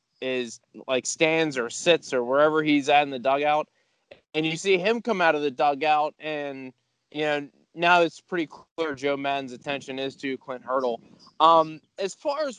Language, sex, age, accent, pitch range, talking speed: English, male, 20-39, American, 140-190 Hz, 185 wpm